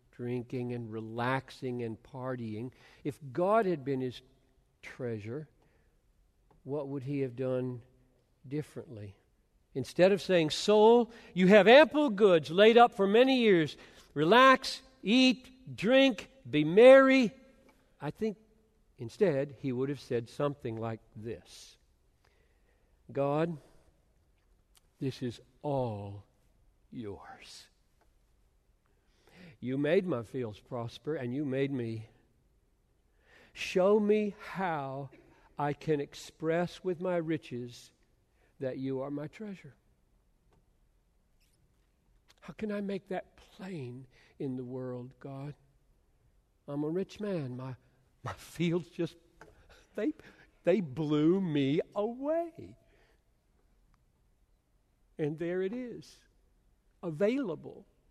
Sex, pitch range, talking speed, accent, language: male, 125-185 Hz, 105 wpm, American, English